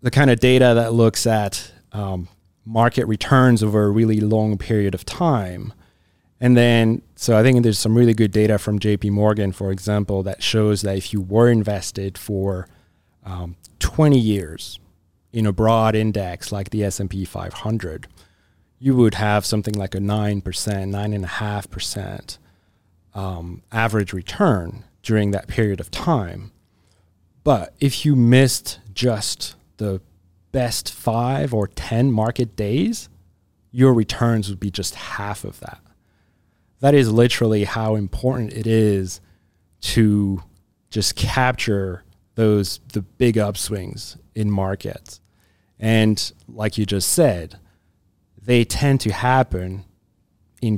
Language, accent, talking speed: English, American, 140 wpm